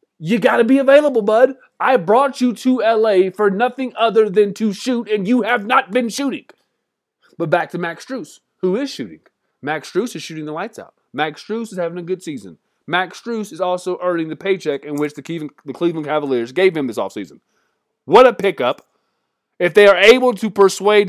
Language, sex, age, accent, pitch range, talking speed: English, male, 30-49, American, 170-230 Hz, 200 wpm